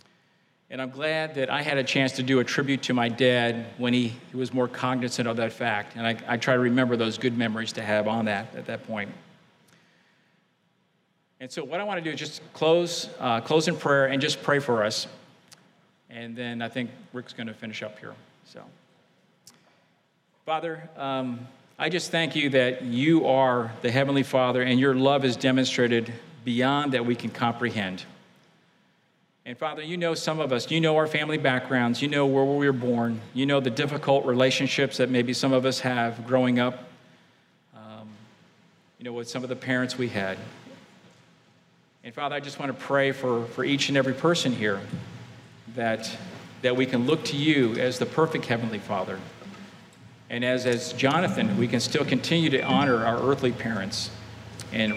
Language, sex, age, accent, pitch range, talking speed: English, male, 50-69, American, 120-140 Hz, 185 wpm